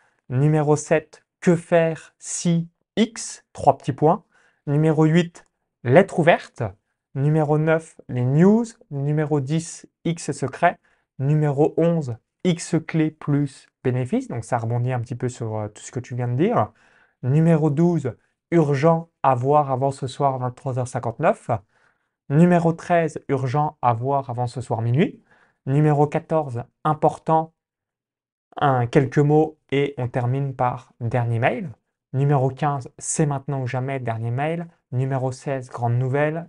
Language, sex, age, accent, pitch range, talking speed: French, male, 20-39, French, 125-160 Hz, 135 wpm